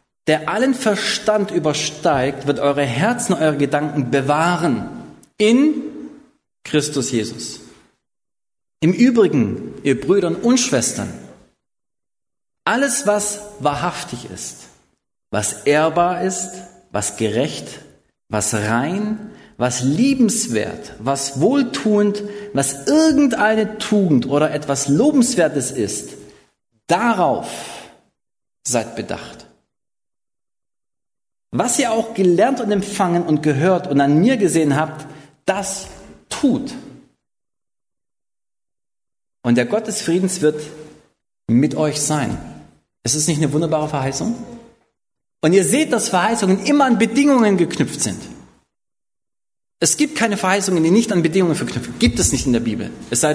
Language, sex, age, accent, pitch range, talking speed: German, male, 40-59, German, 145-215 Hz, 115 wpm